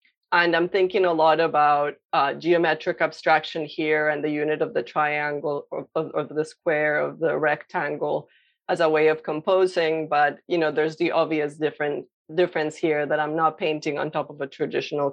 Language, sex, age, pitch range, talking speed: English, female, 30-49, 155-180 Hz, 180 wpm